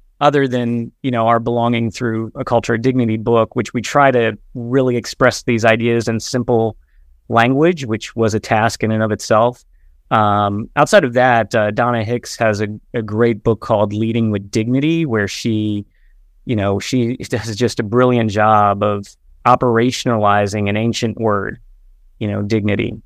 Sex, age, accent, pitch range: male, 30-49, American, 105-120 Hz